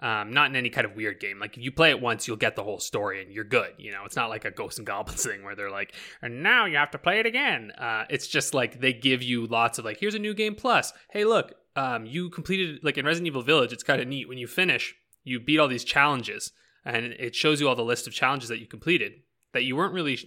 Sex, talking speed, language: male, 285 wpm, English